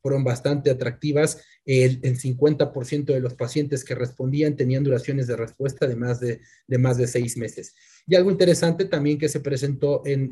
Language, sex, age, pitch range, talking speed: Spanish, male, 30-49, 125-145 Hz, 180 wpm